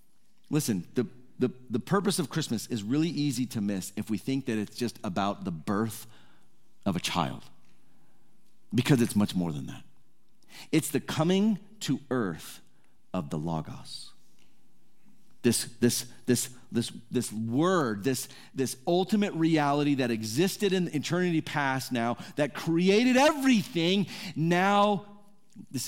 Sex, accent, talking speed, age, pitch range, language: male, American, 140 wpm, 40-59, 110-170 Hz, English